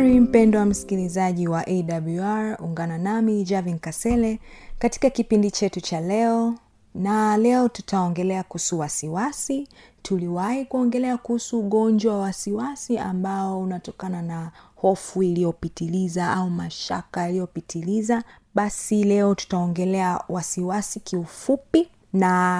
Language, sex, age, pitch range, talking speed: Swahili, female, 30-49, 180-230 Hz, 105 wpm